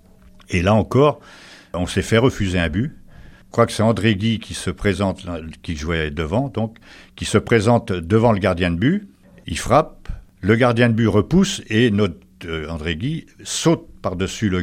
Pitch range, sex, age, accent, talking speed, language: 90-115 Hz, male, 60-79, French, 180 wpm, French